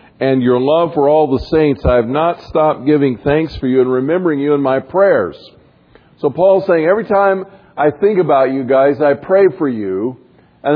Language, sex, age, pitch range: English, male, 50-69, 120-150 Hz